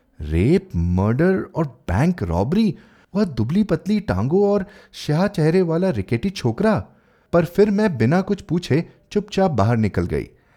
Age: 30-49